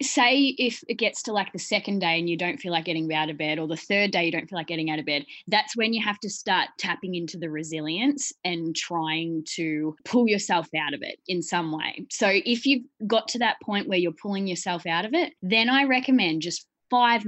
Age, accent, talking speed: 20-39, Australian, 245 wpm